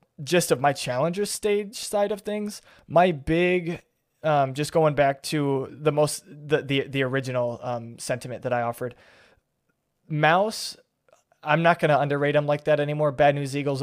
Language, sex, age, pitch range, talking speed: English, male, 20-39, 125-145 Hz, 170 wpm